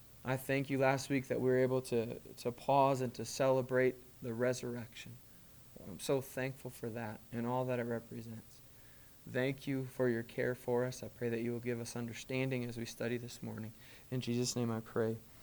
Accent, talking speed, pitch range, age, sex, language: American, 200 wpm, 125-175 Hz, 20-39, male, English